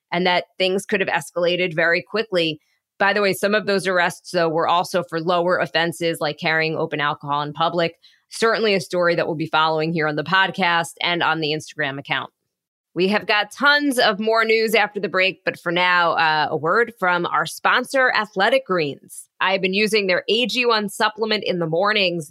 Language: English